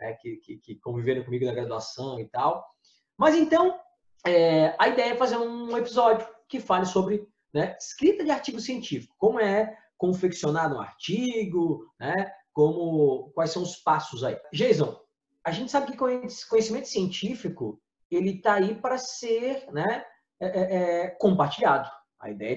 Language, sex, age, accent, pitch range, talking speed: Portuguese, male, 20-39, Brazilian, 155-225 Hz, 155 wpm